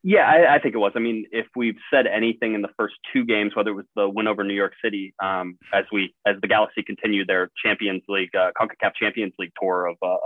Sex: male